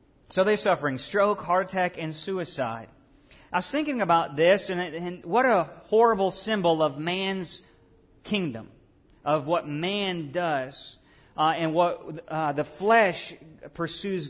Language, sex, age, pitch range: English, male, 40-59, 145-180 Hz